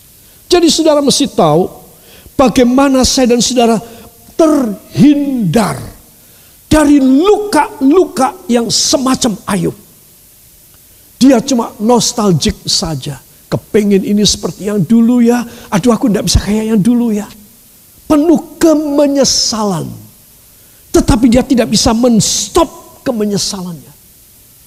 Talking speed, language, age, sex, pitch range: 95 wpm, Indonesian, 50-69, male, 165-230 Hz